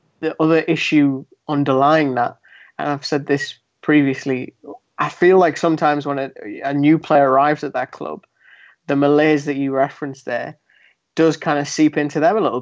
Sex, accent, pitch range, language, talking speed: male, British, 135-155 Hz, English, 175 wpm